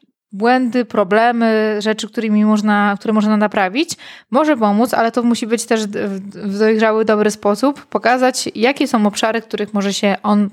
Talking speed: 160 wpm